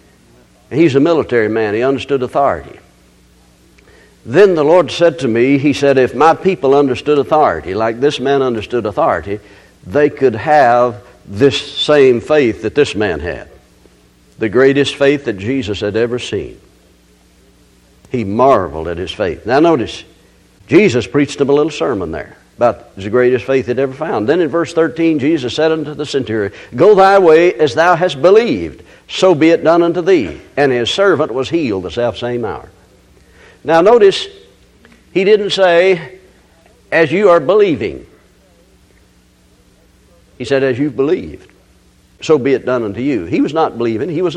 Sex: male